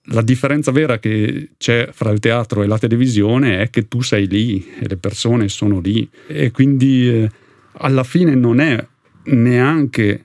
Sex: male